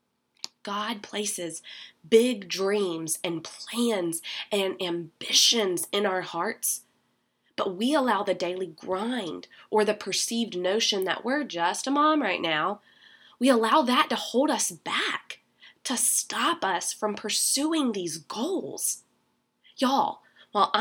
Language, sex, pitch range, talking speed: English, female, 195-275 Hz, 125 wpm